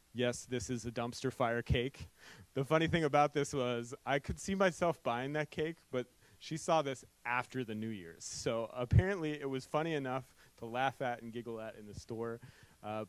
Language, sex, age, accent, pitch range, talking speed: English, male, 30-49, American, 110-135 Hz, 200 wpm